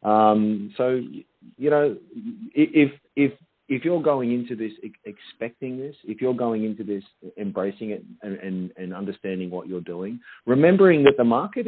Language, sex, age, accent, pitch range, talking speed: English, male, 40-59, Australian, 95-125 Hz, 160 wpm